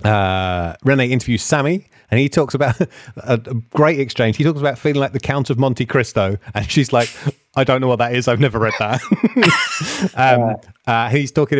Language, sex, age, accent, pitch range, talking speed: English, male, 30-49, British, 110-135 Hz, 200 wpm